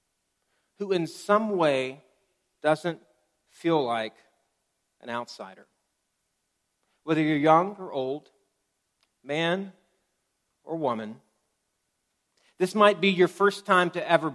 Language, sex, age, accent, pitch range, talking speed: English, male, 40-59, American, 135-195 Hz, 105 wpm